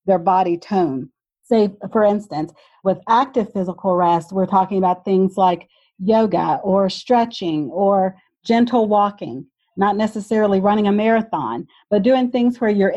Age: 40-59